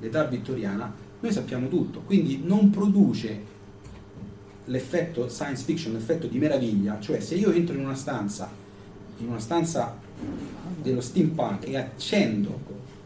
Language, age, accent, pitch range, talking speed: Italian, 40-59, native, 105-155 Hz, 130 wpm